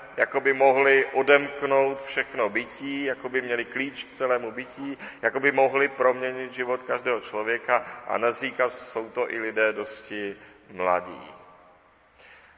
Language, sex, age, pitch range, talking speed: Czech, male, 40-59, 110-140 Hz, 135 wpm